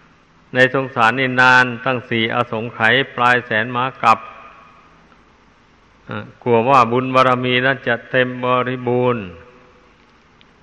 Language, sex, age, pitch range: Thai, male, 60-79, 120-135 Hz